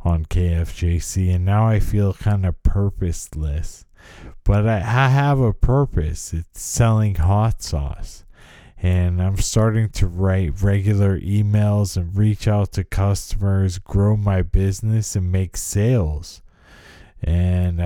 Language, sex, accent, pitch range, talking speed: English, male, American, 90-105 Hz, 130 wpm